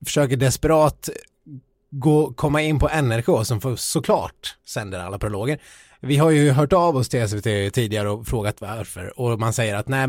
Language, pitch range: Swedish, 110-145 Hz